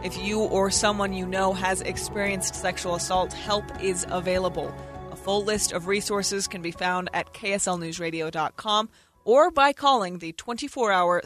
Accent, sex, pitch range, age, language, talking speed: American, female, 185-275 Hz, 30-49, English, 150 wpm